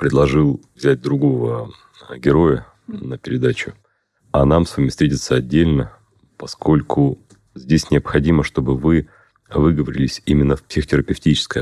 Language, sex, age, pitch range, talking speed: Russian, male, 30-49, 70-95 Hz, 110 wpm